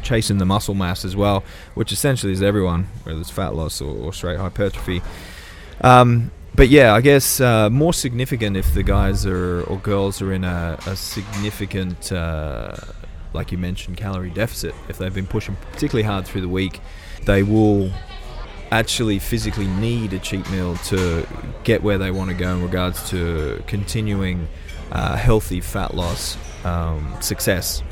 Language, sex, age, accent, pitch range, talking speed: English, male, 20-39, Australian, 85-100 Hz, 165 wpm